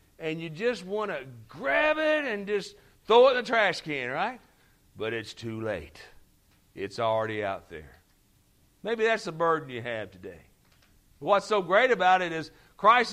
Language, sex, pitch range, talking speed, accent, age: English, male, 140-200 Hz, 175 wpm, American, 60-79